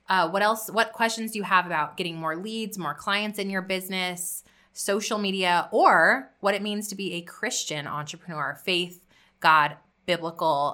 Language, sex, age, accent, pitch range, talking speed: English, female, 20-39, American, 165-205 Hz, 175 wpm